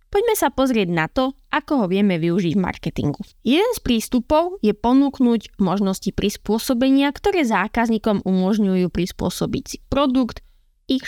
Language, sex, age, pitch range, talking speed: Slovak, female, 20-39, 180-245 Hz, 135 wpm